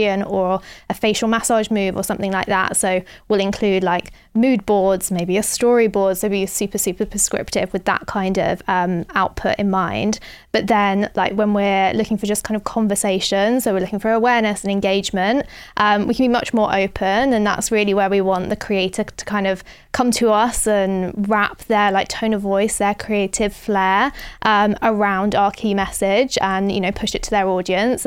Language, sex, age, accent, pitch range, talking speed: English, female, 20-39, British, 195-220 Hz, 200 wpm